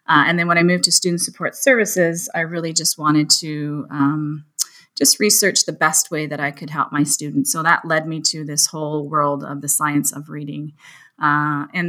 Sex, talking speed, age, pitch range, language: female, 210 wpm, 30-49, 145-165 Hz, English